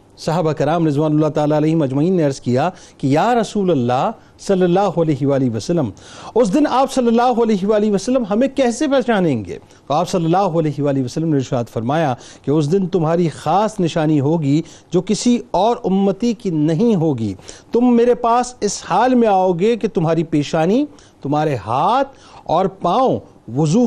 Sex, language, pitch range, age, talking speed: male, Urdu, 140-205 Hz, 40-59, 170 wpm